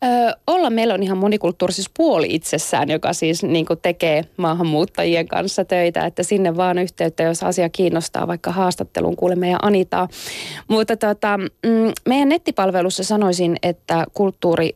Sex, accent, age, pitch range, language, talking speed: female, native, 20-39, 165-205 Hz, Finnish, 135 wpm